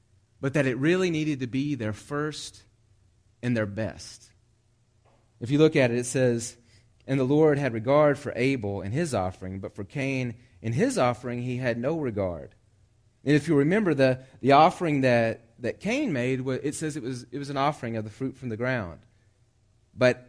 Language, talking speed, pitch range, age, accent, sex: English, 190 wpm, 110-145 Hz, 30-49, American, male